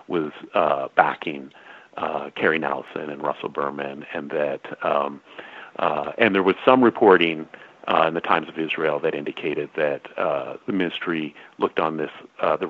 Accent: American